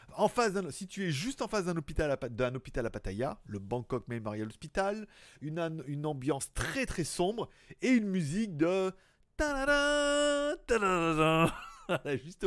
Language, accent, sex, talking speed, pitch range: French, French, male, 145 wpm, 130-190 Hz